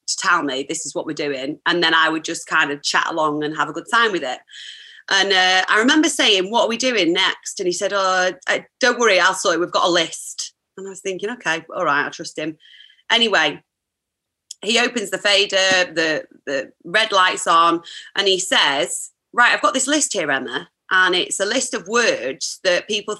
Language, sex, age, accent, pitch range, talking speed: English, female, 30-49, British, 165-240 Hz, 225 wpm